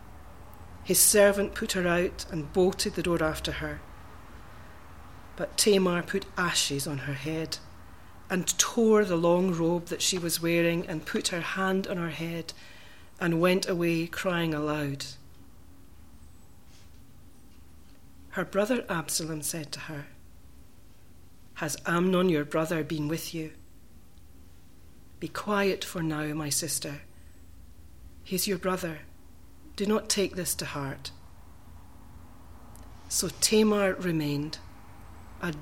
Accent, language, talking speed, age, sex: British, English, 120 wpm, 40-59, female